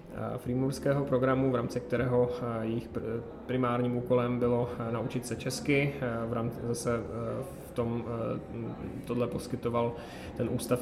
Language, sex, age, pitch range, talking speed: Czech, male, 20-39, 115-125 Hz, 115 wpm